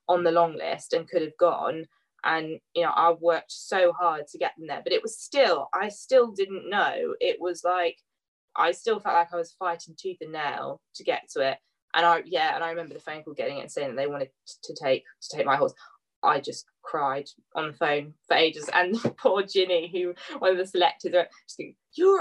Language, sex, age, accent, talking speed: English, female, 20-39, British, 230 wpm